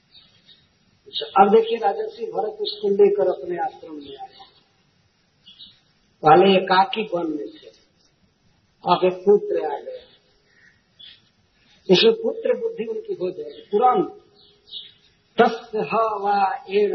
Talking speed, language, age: 105 wpm, Hindi, 50-69